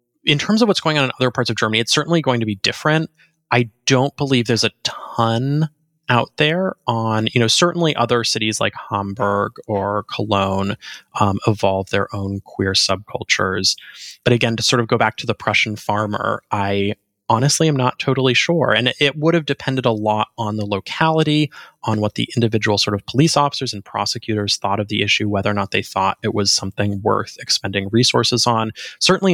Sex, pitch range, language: male, 105-135 Hz, English